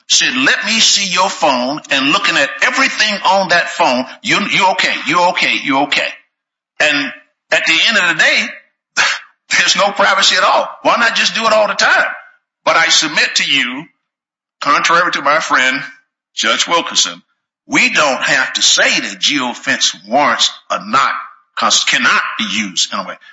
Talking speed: 175 wpm